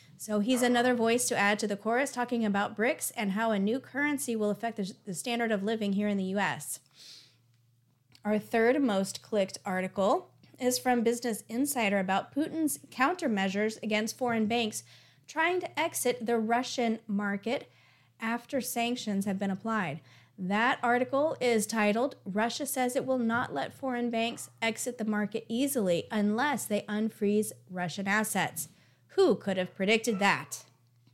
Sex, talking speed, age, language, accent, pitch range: female, 150 wpm, 30-49, English, American, 200-250 Hz